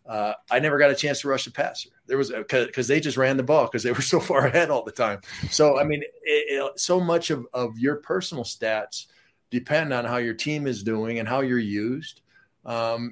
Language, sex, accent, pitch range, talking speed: English, male, American, 115-135 Hz, 235 wpm